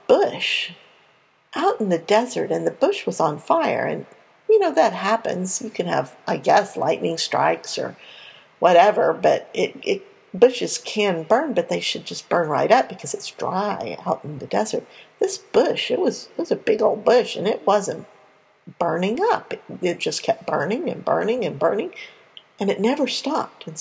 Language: English